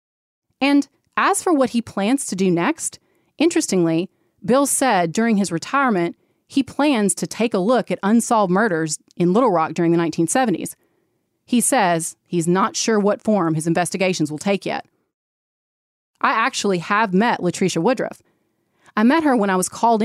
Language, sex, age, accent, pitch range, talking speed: English, female, 30-49, American, 175-230 Hz, 165 wpm